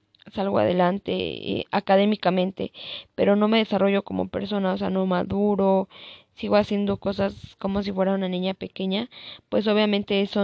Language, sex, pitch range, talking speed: Spanish, female, 185-205 Hz, 150 wpm